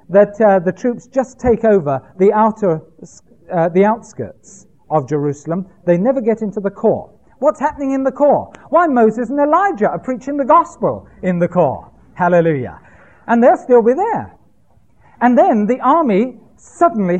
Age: 40-59